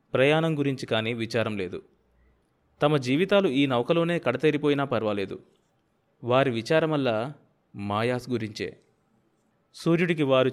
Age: 20-39